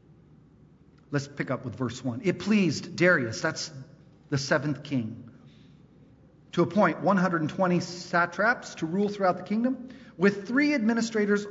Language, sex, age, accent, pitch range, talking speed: English, male, 40-59, American, 145-205 Hz, 130 wpm